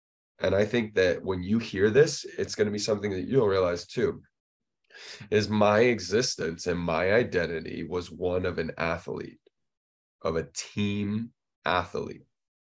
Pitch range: 85-100 Hz